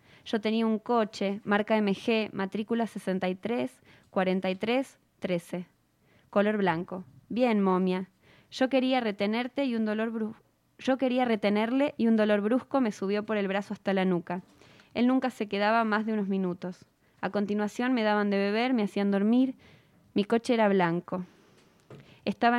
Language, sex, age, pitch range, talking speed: Spanish, female, 20-39, 190-235 Hz, 155 wpm